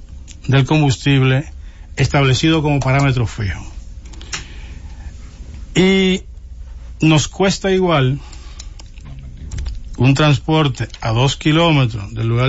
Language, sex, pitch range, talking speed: English, male, 95-160 Hz, 80 wpm